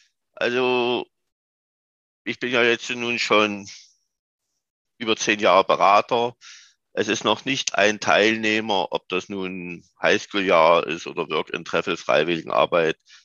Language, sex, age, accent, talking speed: German, male, 50-69, German, 120 wpm